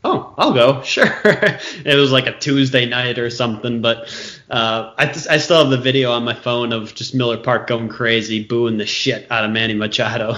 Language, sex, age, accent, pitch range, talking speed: English, male, 20-39, American, 120-150 Hz, 215 wpm